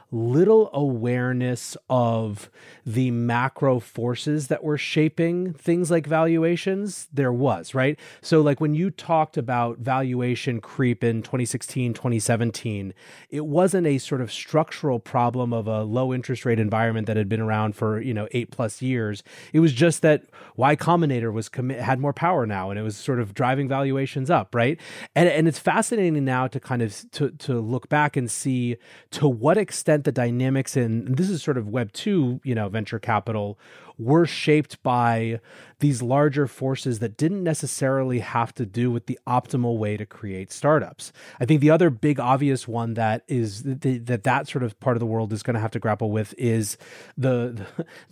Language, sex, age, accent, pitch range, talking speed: English, male, 30-49, American, 115-150 Hz, 180 wpm